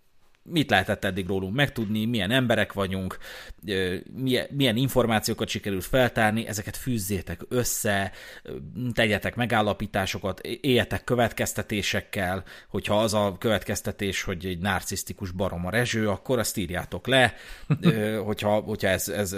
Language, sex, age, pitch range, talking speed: Hungarian, male, 30-49, 100-120 Hz, 110 wpm